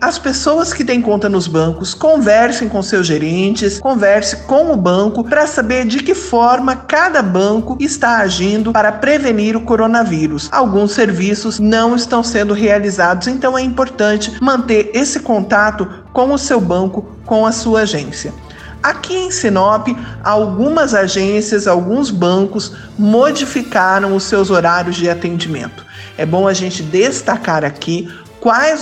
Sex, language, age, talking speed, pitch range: male, Portuguese, 50-69, 140 wpm, 185-250 Hz